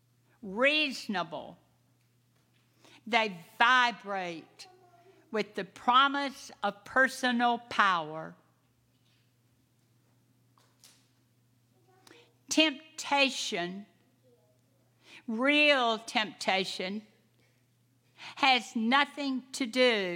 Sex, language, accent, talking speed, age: female, English, American, 50 wpm, 60-79